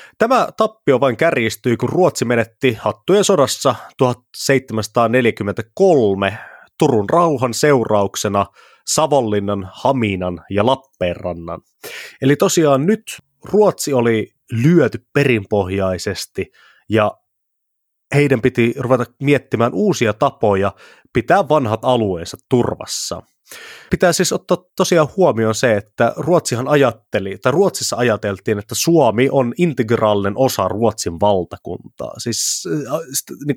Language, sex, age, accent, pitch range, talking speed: Finnish, male, 30-49, native, 105-140 Hz, 100 wpm